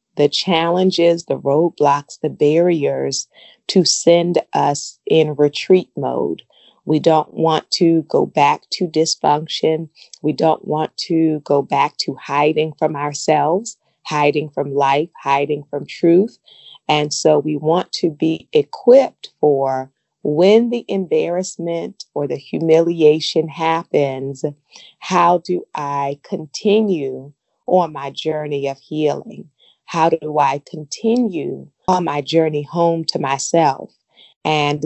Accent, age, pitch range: American, 40-59, 150-185 Hz